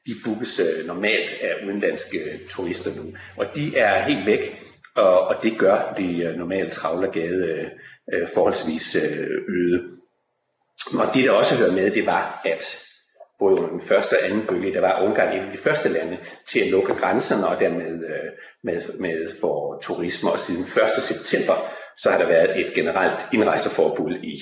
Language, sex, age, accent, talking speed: Danish, male, 50-69, native, 155 wpm